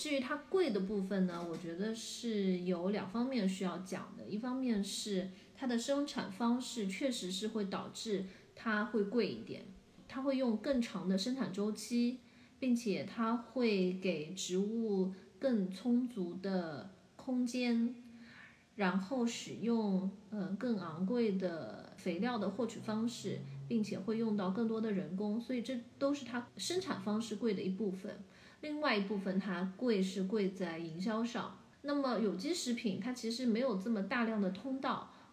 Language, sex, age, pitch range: Chinese, female, 30-49, 190-240 Hz